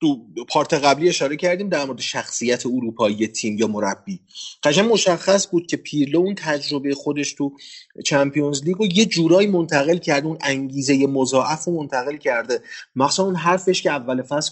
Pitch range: 120-155 Hz